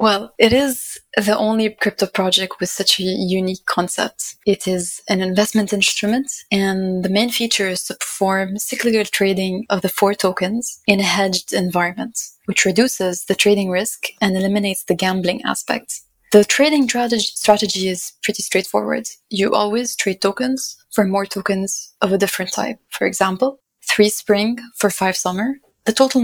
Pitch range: 190-220 Hz